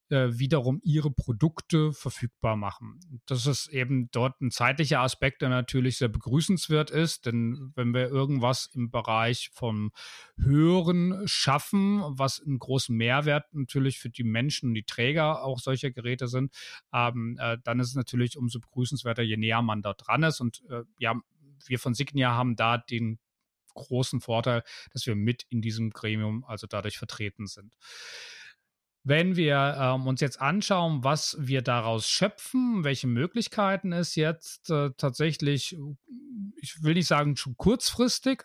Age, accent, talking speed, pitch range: 30-49, German, 150 wpm, 120-155 Hz